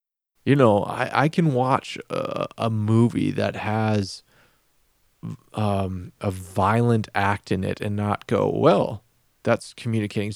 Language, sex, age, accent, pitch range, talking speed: English, male, 20-39, American, 110-140 Hz, 135 wpm